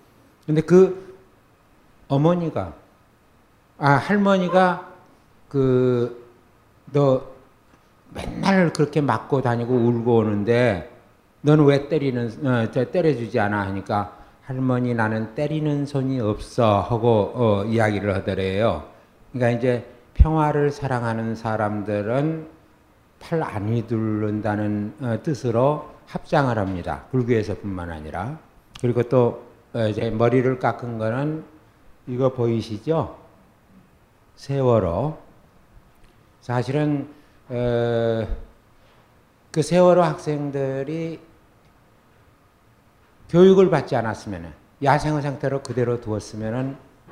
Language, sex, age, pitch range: Korean, male, 60-79, 110-145 Hz